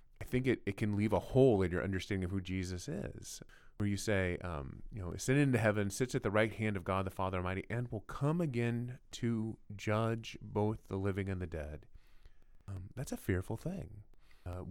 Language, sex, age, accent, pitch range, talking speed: English, male, 30-49, American, 90-110 Hz, 210 wpm